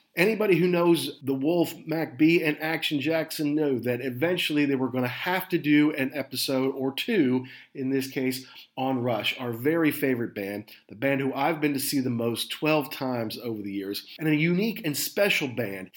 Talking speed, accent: 200 wpm, American